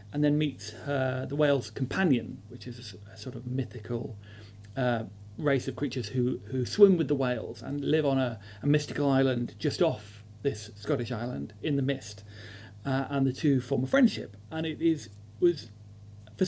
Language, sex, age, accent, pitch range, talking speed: English, male, 40-59, British, 105-145 Hz, 185 wpm